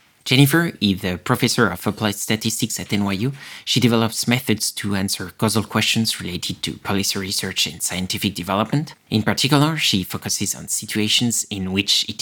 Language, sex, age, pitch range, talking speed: English, male, 30-49, 100-115 Hz, 155 wpm